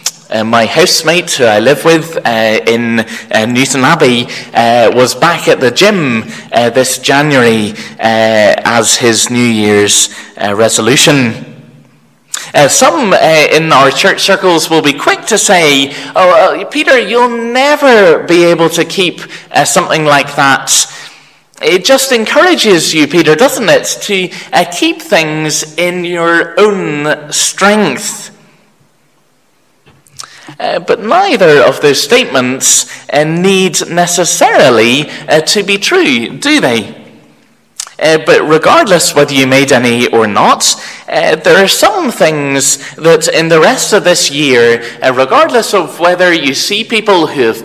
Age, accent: 20-39, British